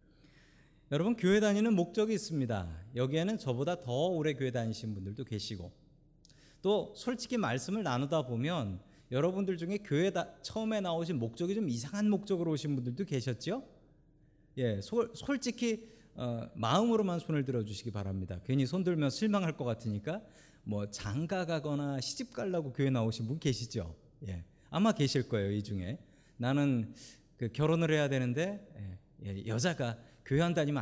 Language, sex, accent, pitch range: Korean, male, native, 120-185 Hz